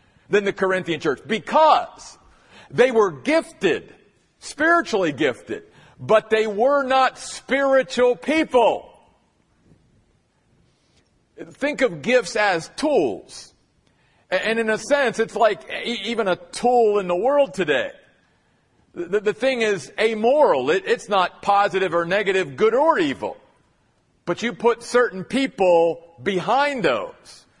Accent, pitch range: American, 185-245 Hz